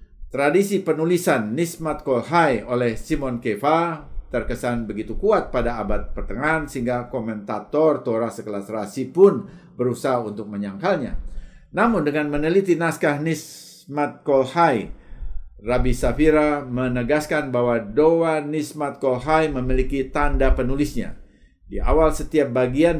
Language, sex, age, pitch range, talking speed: Indonesian, male, 50-69, 110-155 Hz, 110 wpm